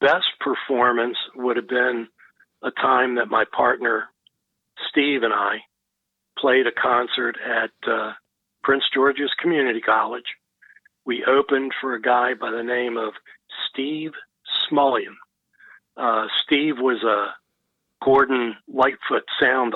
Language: English